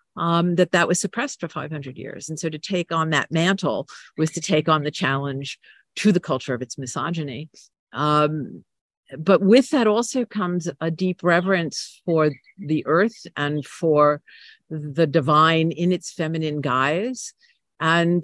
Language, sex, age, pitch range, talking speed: English, female, 50-69, 155-195 Hz, 160 wpm